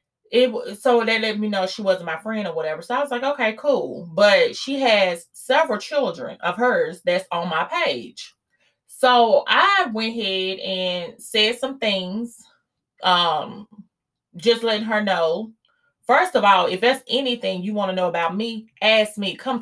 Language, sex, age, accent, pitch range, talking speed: English, female, 30-49, American, 200-250 Hz, 175 wpm